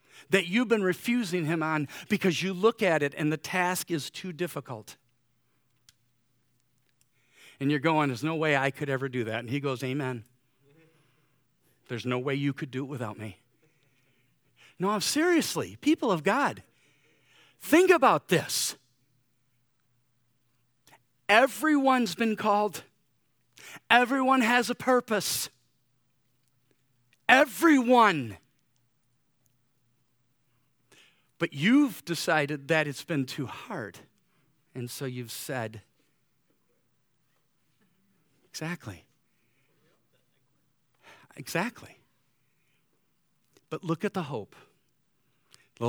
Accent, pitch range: American, 125-175 Hz